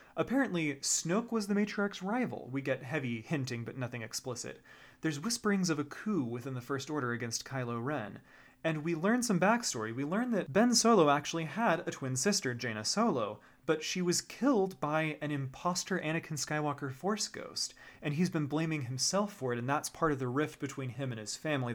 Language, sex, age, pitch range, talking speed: English, male, 30-49, 125-170 Hz, 195 wpm